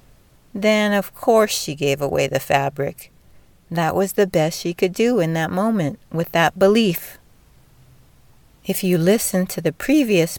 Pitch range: 145-195 Hz